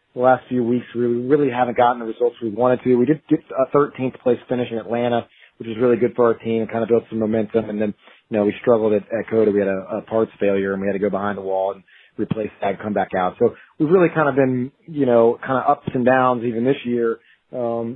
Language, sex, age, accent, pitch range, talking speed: English, male, 30-49, American, 105-125 Hz, 275 wpm